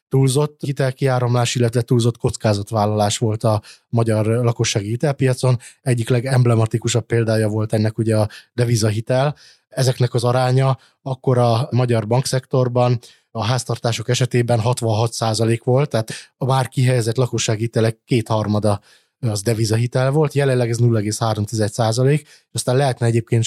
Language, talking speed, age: Hungarian, 120 wpm, 20-39